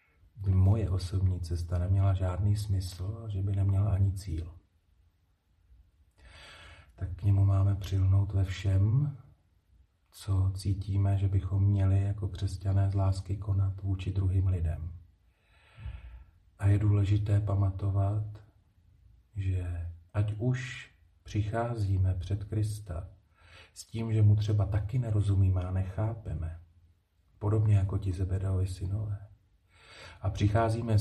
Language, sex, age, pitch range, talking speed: Slovak, male, 40-59, 90-105 Hz, 115 wpm